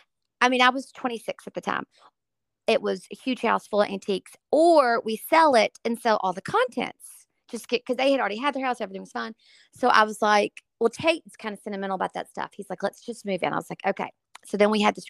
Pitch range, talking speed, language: 200-265 Hz, 250 wpm, English